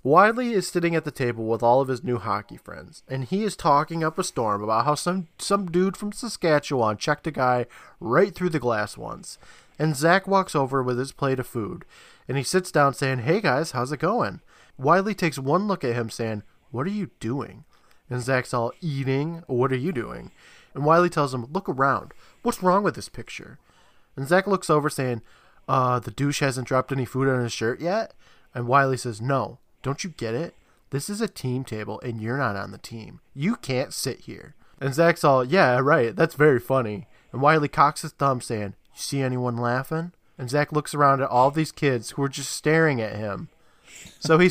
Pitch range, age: 120-165 Hz, 20-39